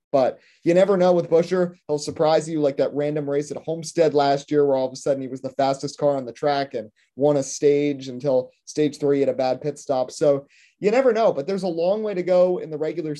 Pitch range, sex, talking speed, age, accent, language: 140-180 Hz, male, 255 wpm, 30-49, American, English